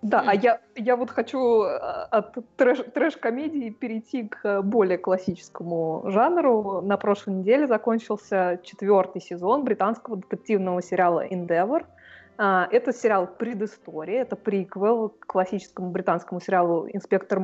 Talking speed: 110 wpm